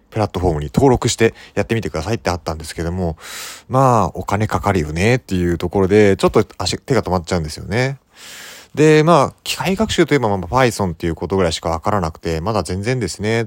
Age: 30-49